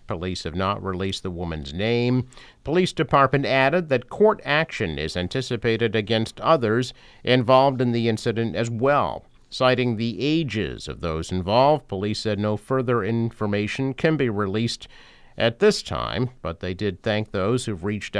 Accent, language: American, English